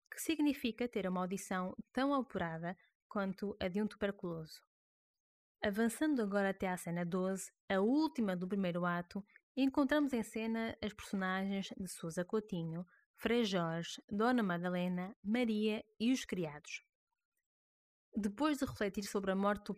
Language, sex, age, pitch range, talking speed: Portuguese, female, 20-39, 185-225 Hz, 140 wpm